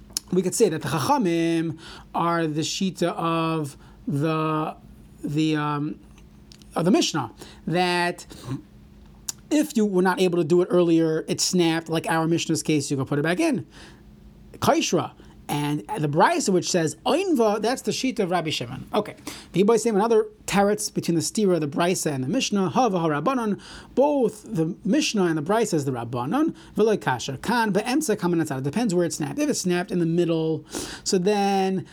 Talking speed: 170 wpm